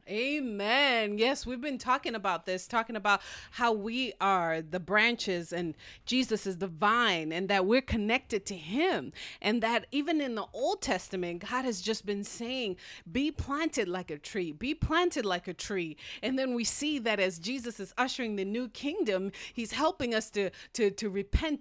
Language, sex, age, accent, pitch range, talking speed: English, female, 30-49, American, 205-285 Hz, 185 wpm